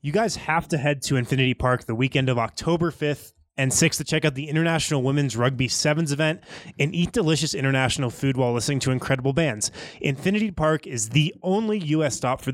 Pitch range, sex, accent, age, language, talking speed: 125-160 Hz, male, American, 20-39, English, 200 wpm